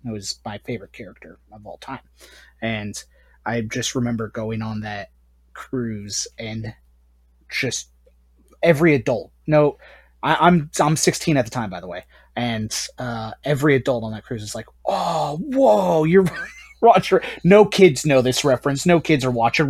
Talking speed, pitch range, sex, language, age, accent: 160 wpm, 110-140 Hz, male, English, 30-49, American